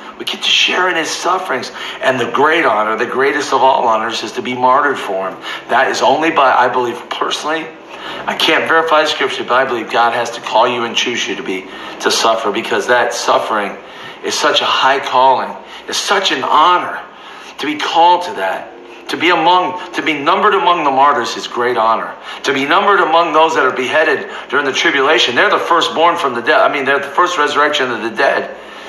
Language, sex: English, male